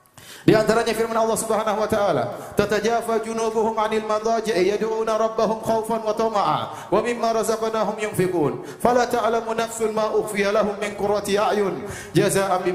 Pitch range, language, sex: 175-230 Hz, Indonesian, male